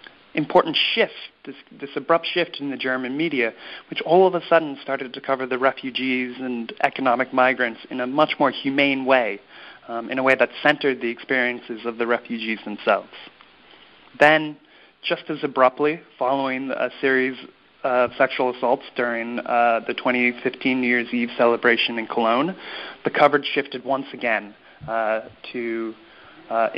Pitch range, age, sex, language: 120-140 Hz, 30-49, male, English